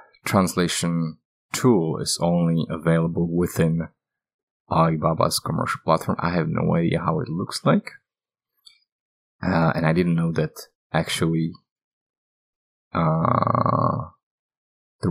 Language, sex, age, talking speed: English, male, 30-49, 105 wpm